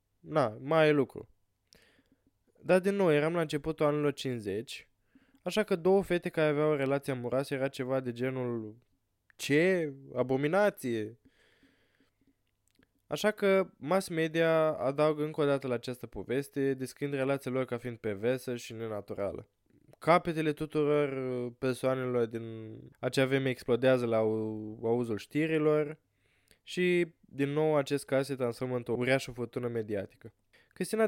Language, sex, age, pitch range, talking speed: Romanian, male, 20-39, 125-155 Hz, 130 wpm